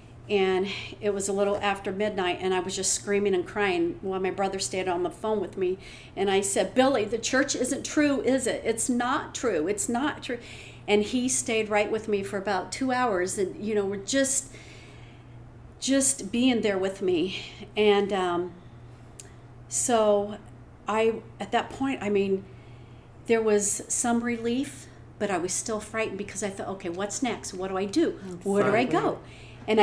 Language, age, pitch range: English, 50-69, 135-220 Hz